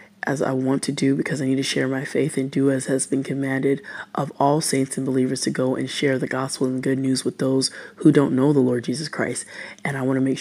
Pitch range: 135-180 Hz